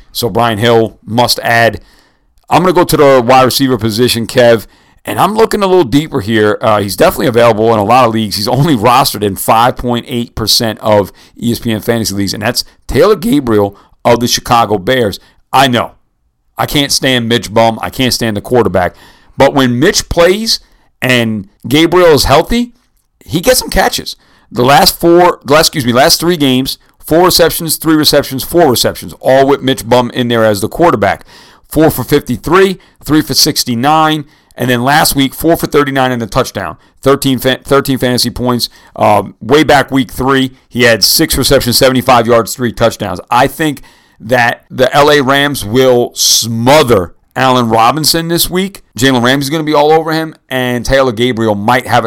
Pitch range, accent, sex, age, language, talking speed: 115-140 Hz, American, male, 50-69, English, 180 wpm